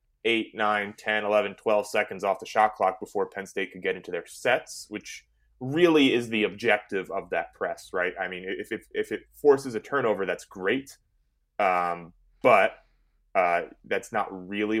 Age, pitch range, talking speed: 20-39, 90-115 Hz, 180 wpm